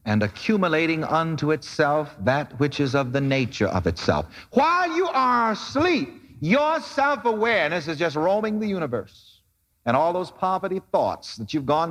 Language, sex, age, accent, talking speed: English, male, 60-79, American, 155 wpm